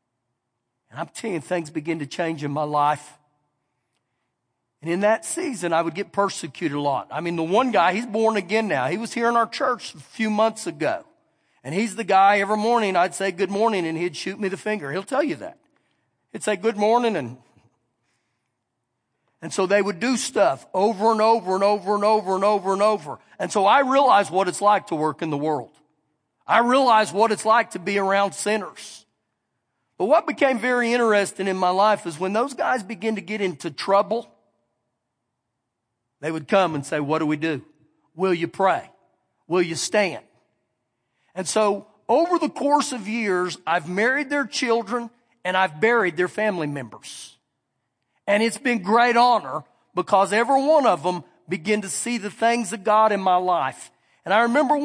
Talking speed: 190 wpm